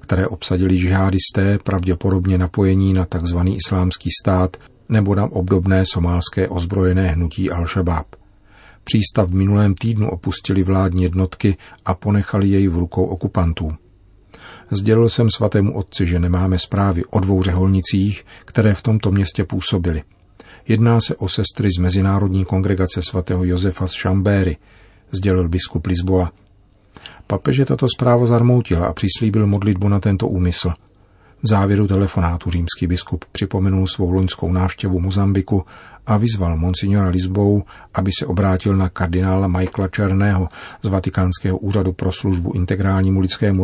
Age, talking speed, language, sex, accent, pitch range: 40-59, 130 wpm, Czech, male, native, 90-100 Hz